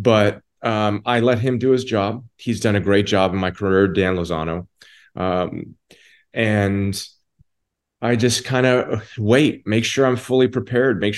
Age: 30-49